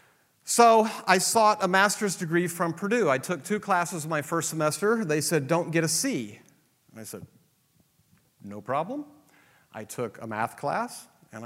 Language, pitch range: English, 130-180 Hz